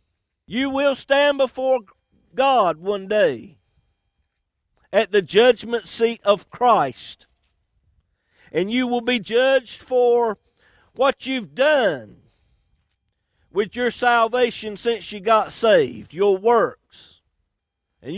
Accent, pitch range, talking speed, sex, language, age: American, 210-280 Hz, 105 wpm, male, English, 50-69